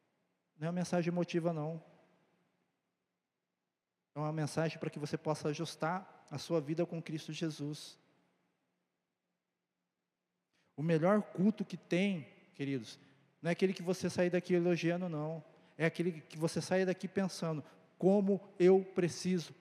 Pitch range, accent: 150-185 Hz, Brazilian